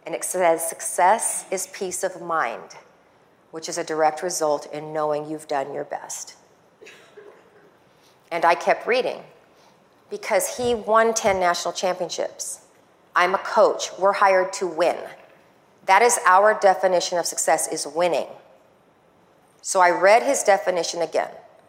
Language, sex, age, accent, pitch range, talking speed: English, female, 40-59, American, 165-210 Hz, 140 wpm